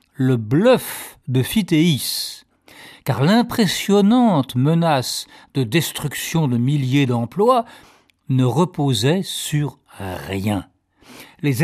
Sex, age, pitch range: male, 50-69, 120-170 Hz